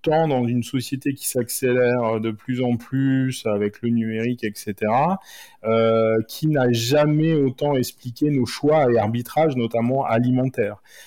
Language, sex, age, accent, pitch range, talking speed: French, male, 30-49, French, 110-135 Hz, 135 wpm